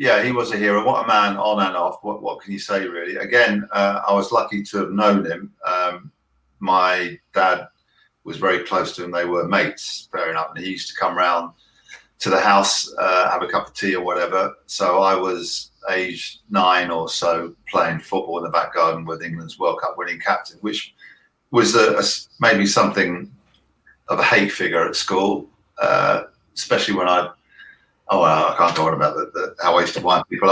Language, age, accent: English, 50-69, British